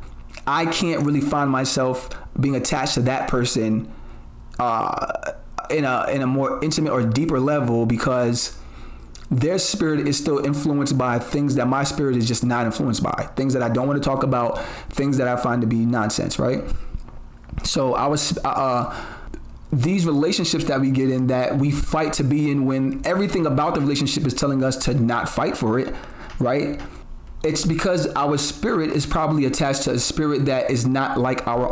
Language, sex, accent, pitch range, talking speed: English, male, American, 125-150 Hz, 185 wpm